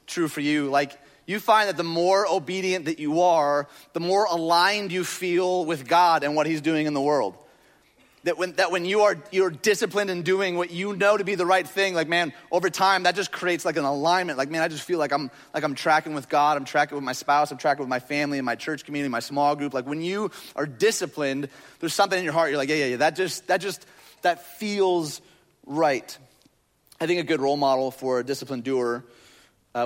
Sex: male